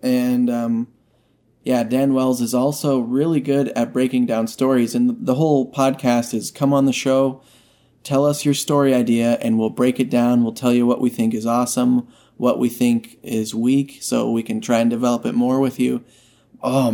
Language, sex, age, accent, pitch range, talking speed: English, male, 20-39, American, 120-135 Hz, 200 wpm